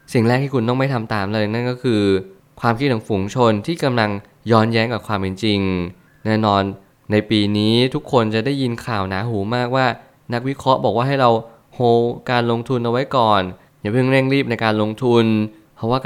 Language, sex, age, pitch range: Thai, male, 20-39, 100-125 Hz